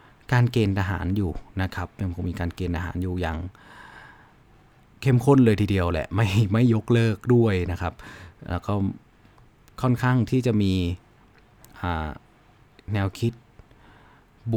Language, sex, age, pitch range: Thai, male, 30-49, 95-120 Hz